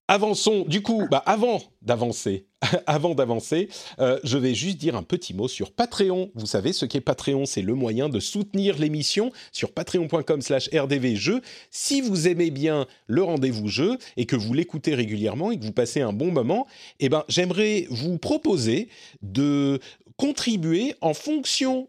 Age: 40-59